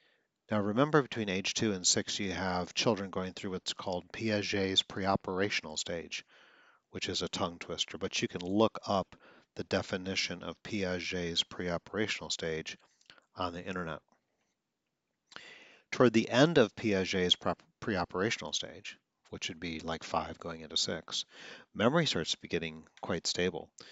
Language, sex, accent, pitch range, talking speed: English, male, American, 85-105 Hz, 145 wpm